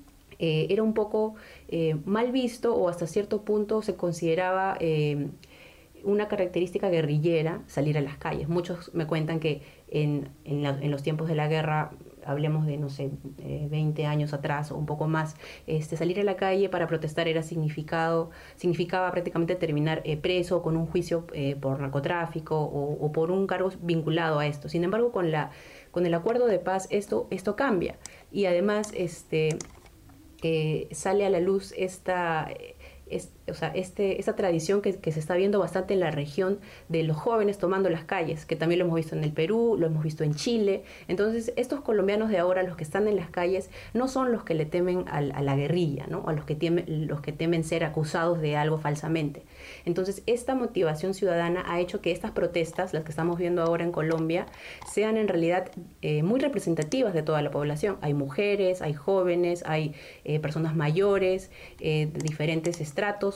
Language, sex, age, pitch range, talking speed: Spanish, female, 30-49, 155-190 Hz, 185 wpm